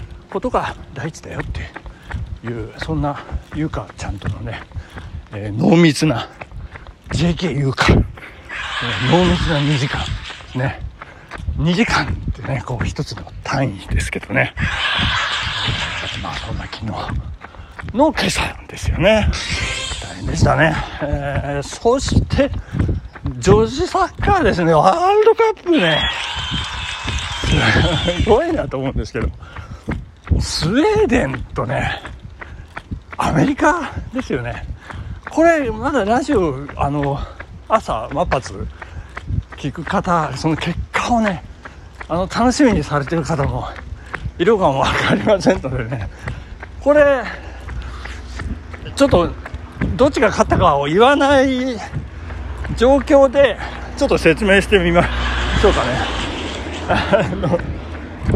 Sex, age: male, 60-79